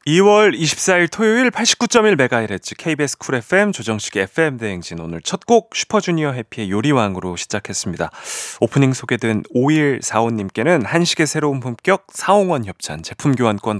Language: Korean